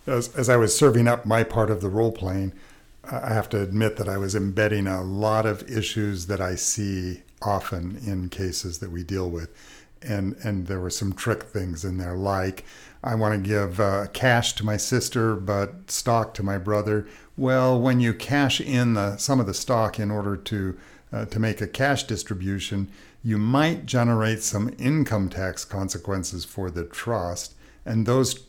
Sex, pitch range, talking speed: male, 95-115 Hz, 185 wpm